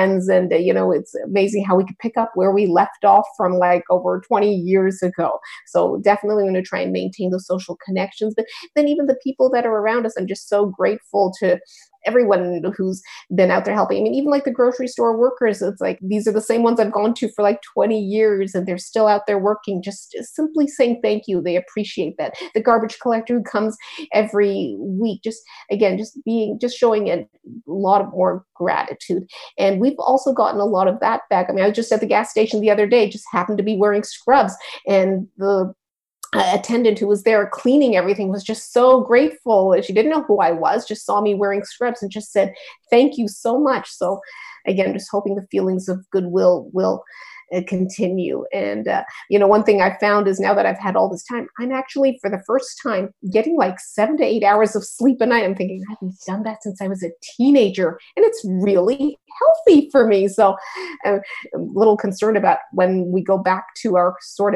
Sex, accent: female, American